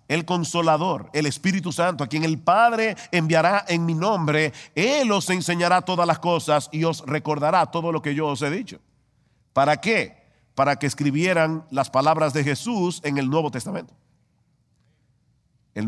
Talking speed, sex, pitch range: 165 wpm, male, 150-220 Hz